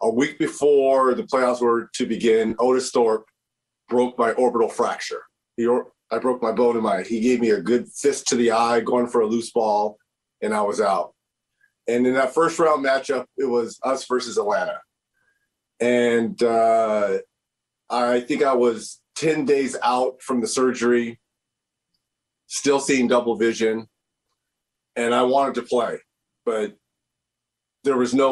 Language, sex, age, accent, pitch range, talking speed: English, male, 40-59, American, 120-150 Hz, 155 wpm